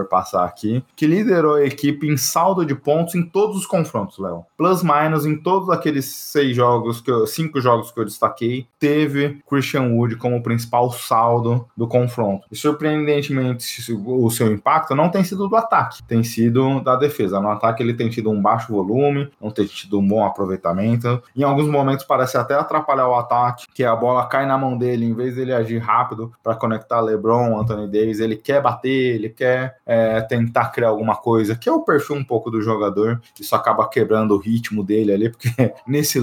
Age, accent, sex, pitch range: 20-39, Brazilian, male, 110-135 Hz